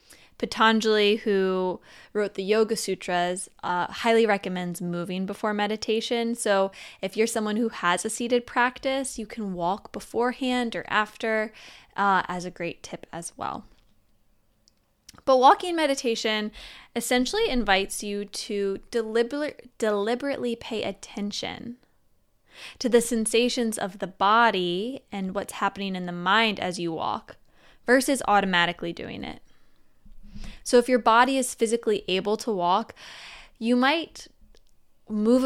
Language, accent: English, American